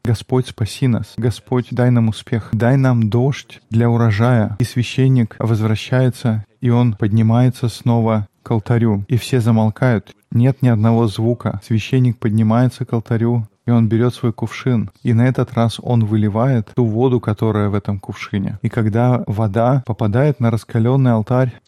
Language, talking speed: Russian, 155 wpm